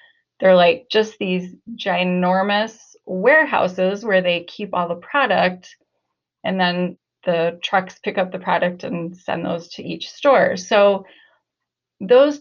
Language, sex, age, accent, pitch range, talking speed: English, female, 30-49, American, 180-245 Hz, 135 wpm